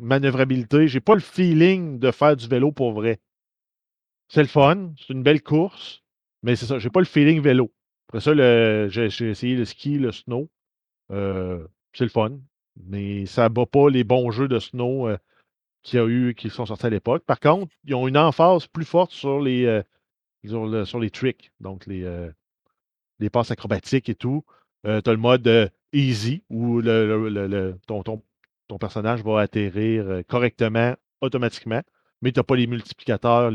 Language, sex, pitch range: French, male, 110-140 Hz